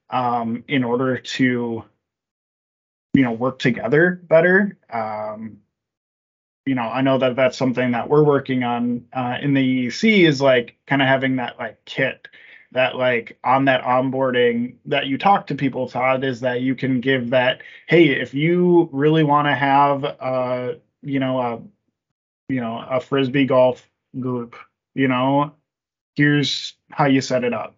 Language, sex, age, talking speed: English, male, 20-39, 160 wpm